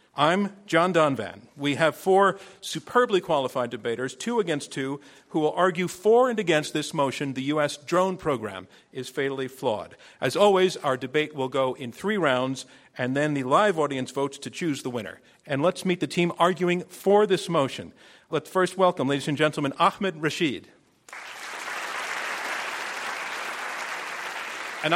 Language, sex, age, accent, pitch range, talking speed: English, male, 50-69, American, 135-175 Hz, 155 wpm